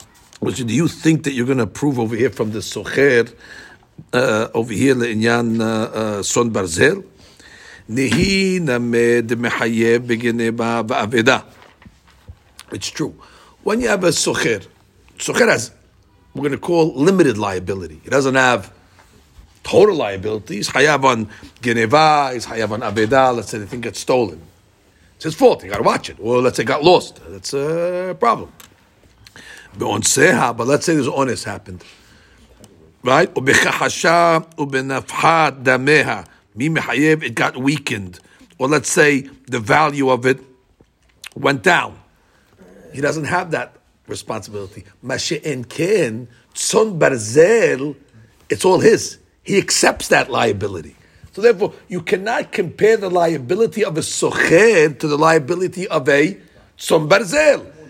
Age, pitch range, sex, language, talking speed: 60-79, 110-155 Hz, male, English, 115 wpm